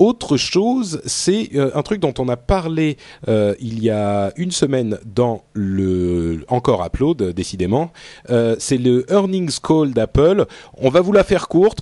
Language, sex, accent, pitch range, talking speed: French, male, French, 100-150 Hz, 160 wpm